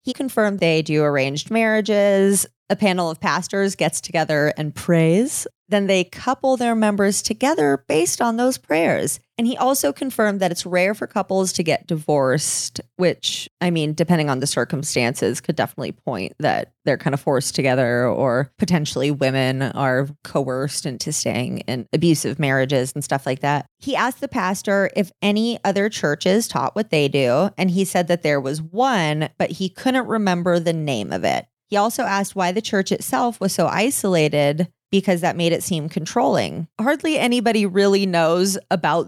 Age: 30-49